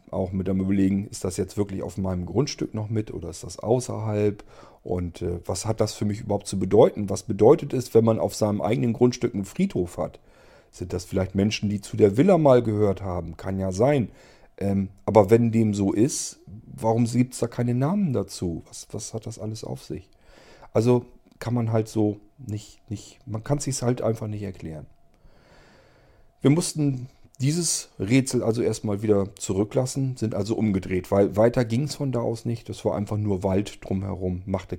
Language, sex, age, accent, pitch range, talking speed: German, male, 40-59, German, 95-115 Hz, 195 wpm